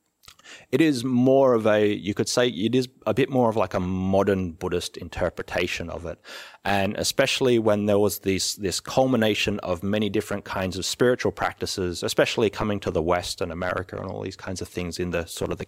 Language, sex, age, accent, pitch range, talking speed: English, male, 30-49, Australian, 90-110 Hz, 210 wpm